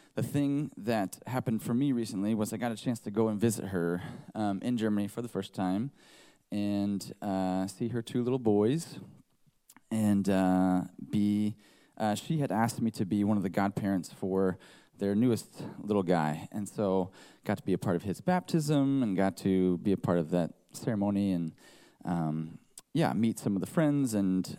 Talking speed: 190 wpm